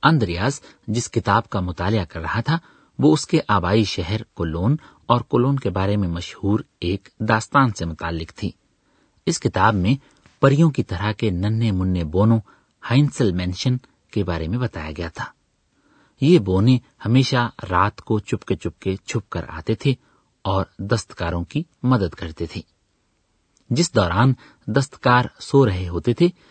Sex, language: male, Urdu